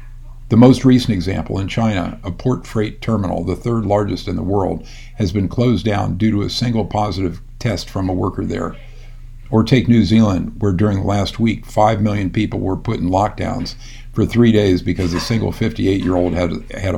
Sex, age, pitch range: male, 50-69, 95-120 Hz